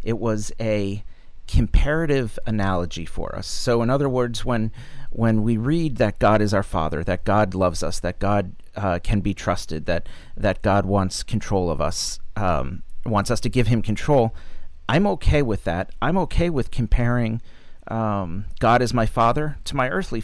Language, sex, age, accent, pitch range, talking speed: English, male, 40-59, American, 95-120 Hz, 180 wpm